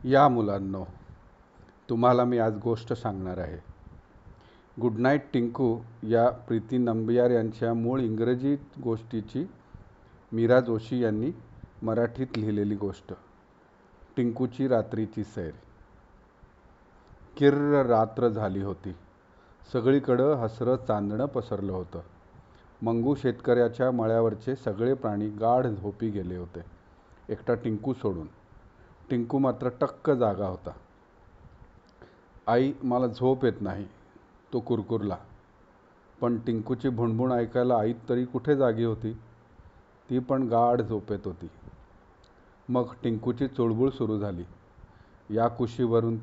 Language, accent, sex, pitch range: English, Indian, male, 100-125 Hz